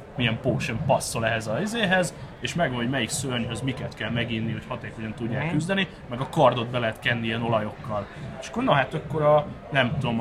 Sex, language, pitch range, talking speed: male, Hungarian, 115-155 Hz, 200 wpm